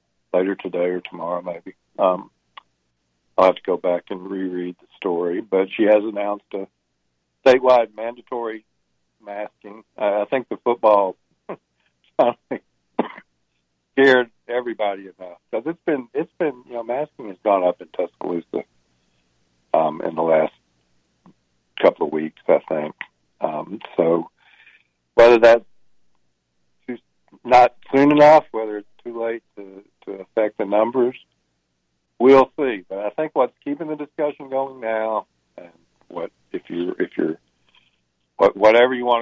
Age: 60-79